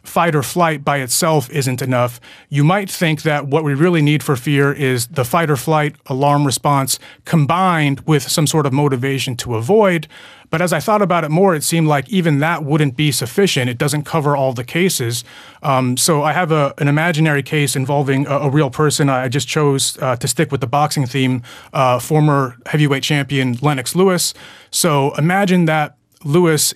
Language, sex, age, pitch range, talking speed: English, male, 30-49, 135-160 Hz, 195 wpm